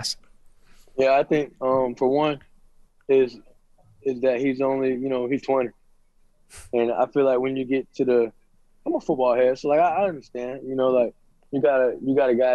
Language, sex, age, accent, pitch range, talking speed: English, male, 20-39, American, 115-135 Hz, 210 wpm